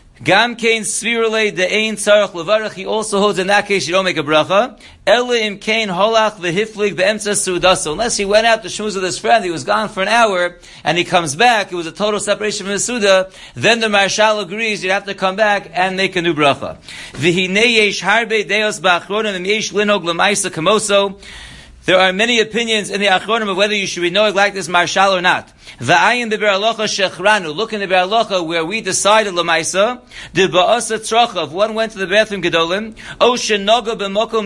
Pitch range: 185-220 Hz